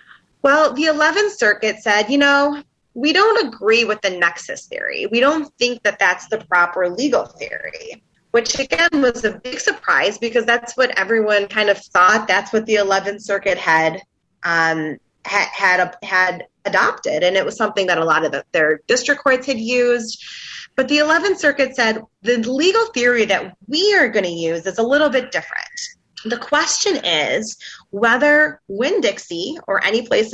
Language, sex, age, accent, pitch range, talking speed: English, female, 20-39, American, 195-285 Hz, 170 wpm